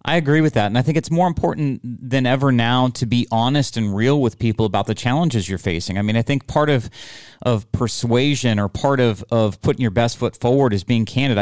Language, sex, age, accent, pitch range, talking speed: English, male, 30-49, American, 110-135 Hz, 235 wpm